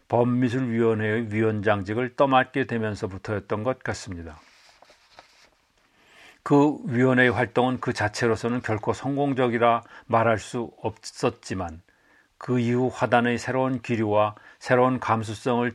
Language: Korean